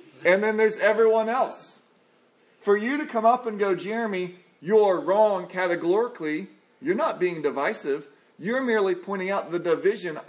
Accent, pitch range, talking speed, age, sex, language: American, 180-225 Hz, 150 wpm, 40-59, male, English